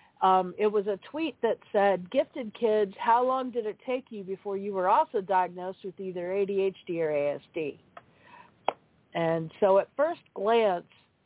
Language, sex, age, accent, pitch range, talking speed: English, female, 50-69, American, 175-230 Hz, 160 wpm